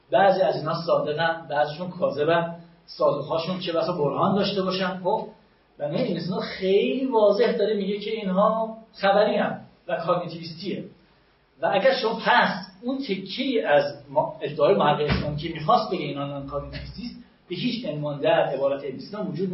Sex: male